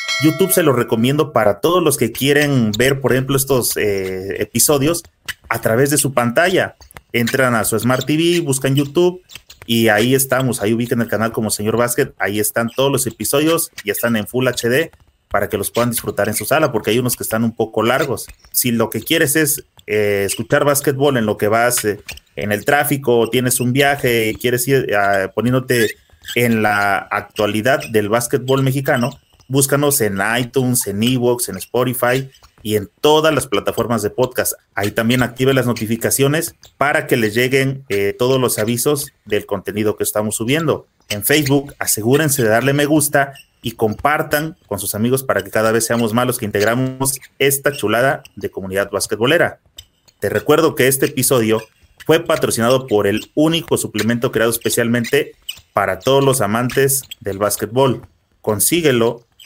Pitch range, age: 110-135 Hz, 30-49